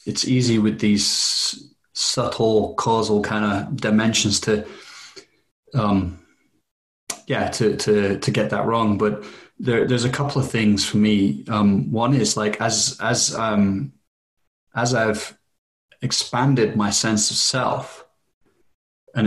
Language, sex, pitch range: English, male, 105-125 Hz